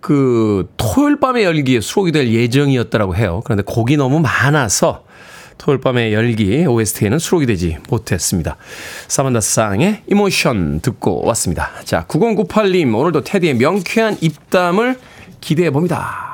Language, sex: Korean, male